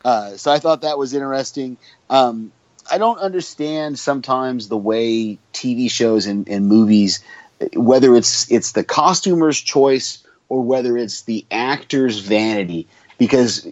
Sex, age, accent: male, 30-49, American